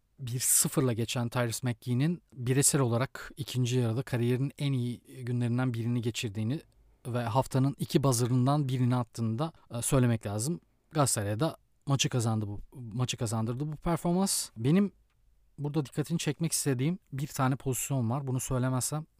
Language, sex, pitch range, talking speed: Turkish, male, 120-165 Hz, 135 wpm